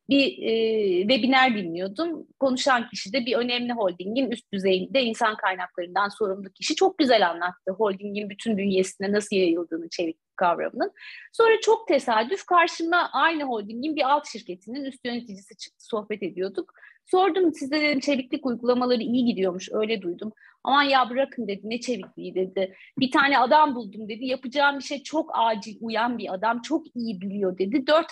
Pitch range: 205-275 Hz